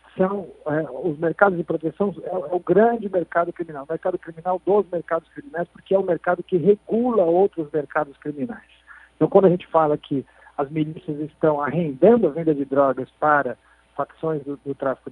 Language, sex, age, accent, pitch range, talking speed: Portuguese, male, 50-69, Brazilian, 150-185 Hz, 185 wpm